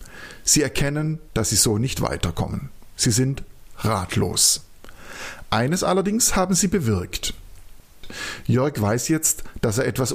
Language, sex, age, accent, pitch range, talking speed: German, male, 50-69, German, 100-140 Hz, 125 wpm